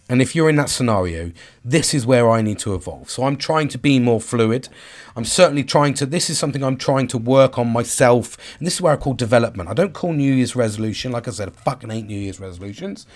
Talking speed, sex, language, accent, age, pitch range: 250 wpm, male, English, British, 40-59, 110-160 Hz